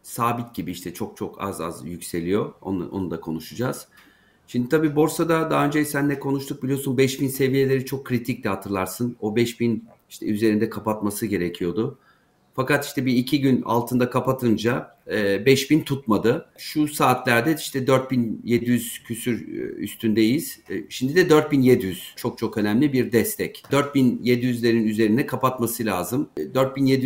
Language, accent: Turkish, native